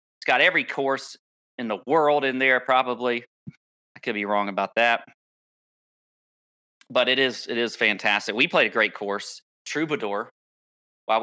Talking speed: 155 wpm